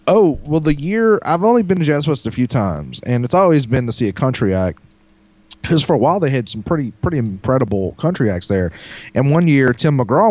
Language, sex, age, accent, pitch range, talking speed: English, male, 30-49, American, 95-140 Hz, 235 wpm